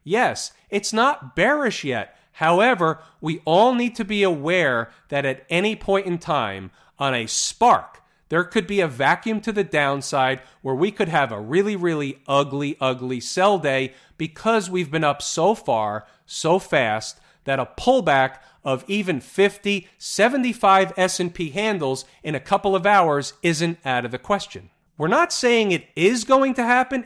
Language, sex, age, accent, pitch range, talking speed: English, male, 40-59, American, 140-205 Hz, 165 wpm